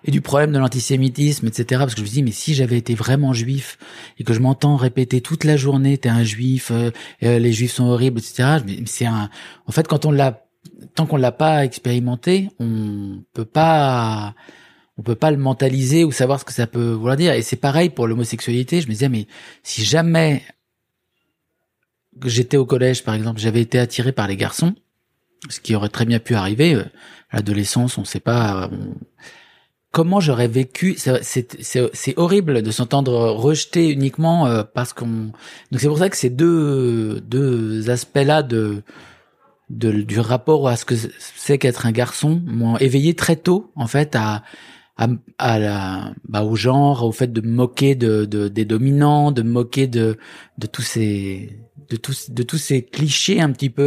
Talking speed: 190 wpm